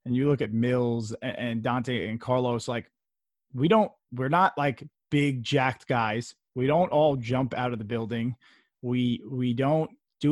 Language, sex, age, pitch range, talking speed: English, male, 30-49, 120-155 Hz, 175 wpm